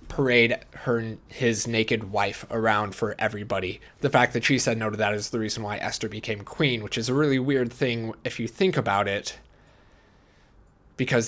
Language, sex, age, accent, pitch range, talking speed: English, male, 20-39, American, 100-120 Hz, 185 wpm